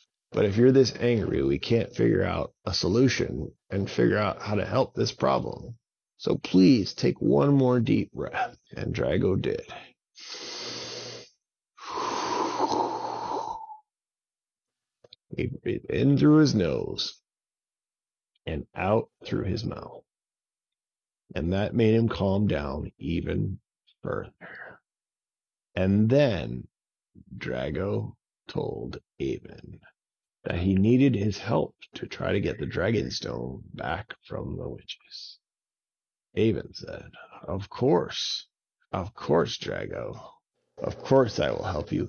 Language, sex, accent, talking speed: English, male, American, 115 wpm